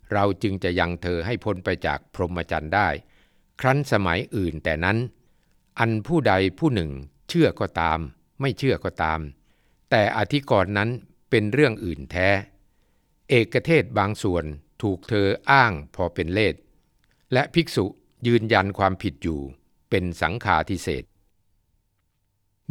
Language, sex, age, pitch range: Thai, male, 60-79, 85-115 Hz